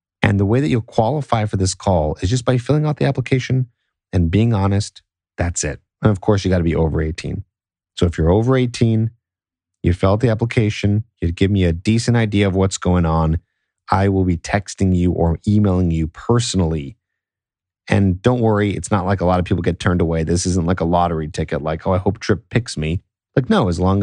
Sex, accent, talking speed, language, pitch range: male, American, 220 wpm, English, 85-110 Hz